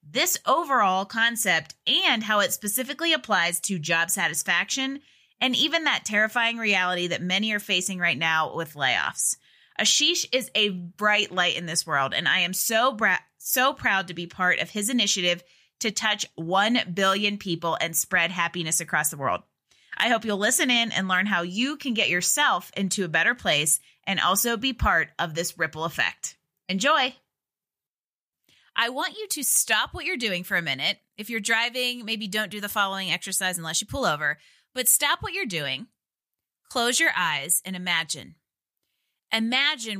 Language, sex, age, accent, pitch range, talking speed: English, female, 20-39, American, 175-235 Hz, 175 wpm